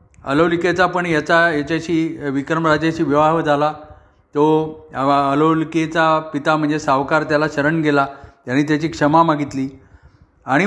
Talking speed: 110 wpm